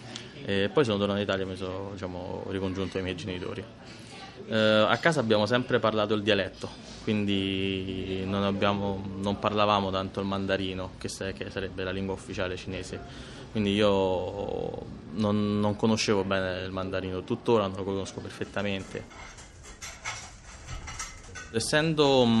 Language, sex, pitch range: Italian, male, 95-110 Hz